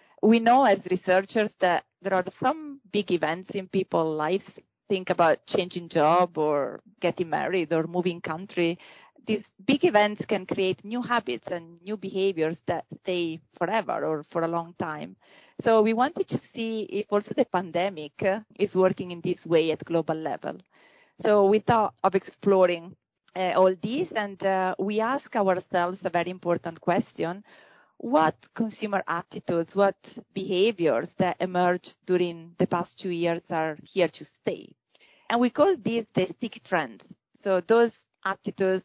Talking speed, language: 155 wpm, English